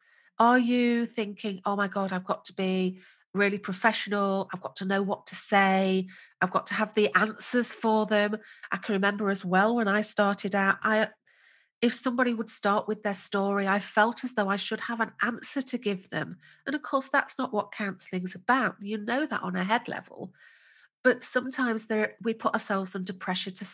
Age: 40-59